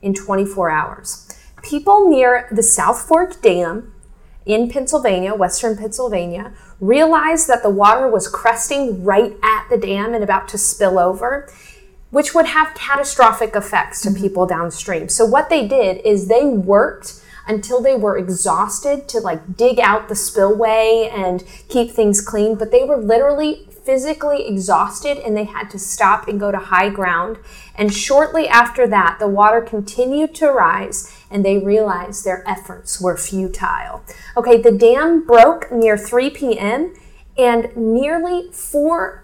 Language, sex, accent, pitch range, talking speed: English, female, American, 200-265 Hz, 150 wpm